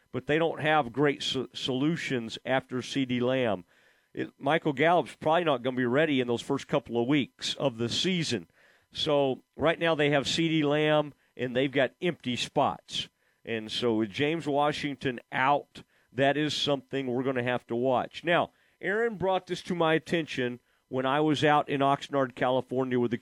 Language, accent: English, American